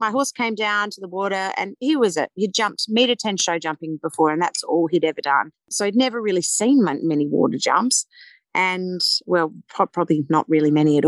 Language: English